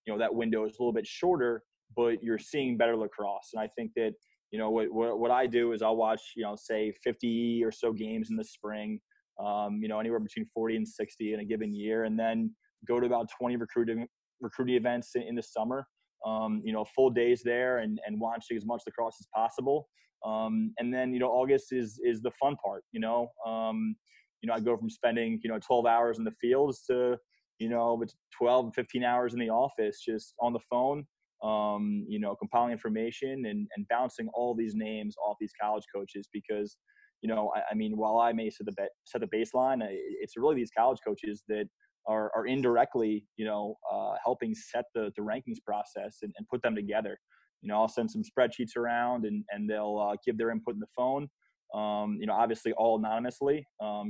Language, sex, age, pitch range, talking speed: English, male, 20-39, 110-125 Hz, 215 wpm